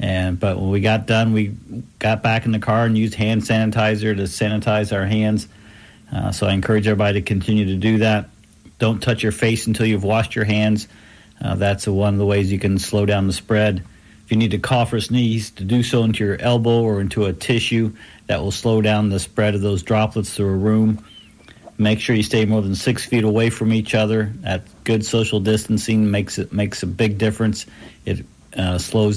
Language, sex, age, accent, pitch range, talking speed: English, male, 50-69, American, 100-110 Hz, 215 wpm